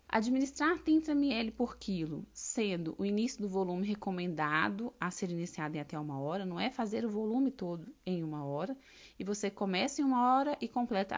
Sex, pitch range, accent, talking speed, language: female, 185-250 Hz, Brazilian, 190 wpm, Portuguese